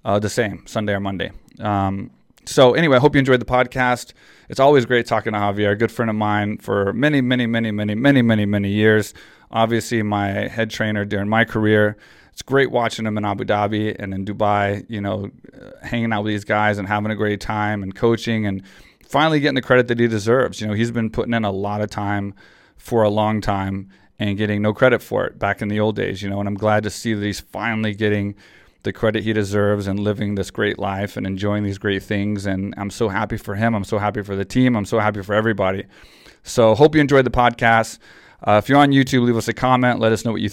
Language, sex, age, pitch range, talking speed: English, male, 30-49, 105-125 Hz, 240 wpm